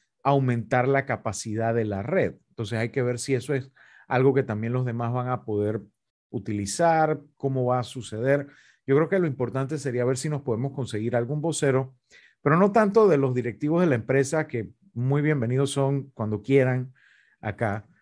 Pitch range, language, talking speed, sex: 120-140 Hz, Spanish, 185 wpm, male